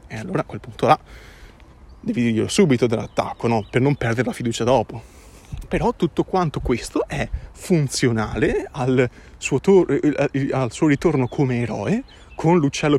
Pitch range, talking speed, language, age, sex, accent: 125-195 Hz, 150 wpm, Italian, 30-49, male, native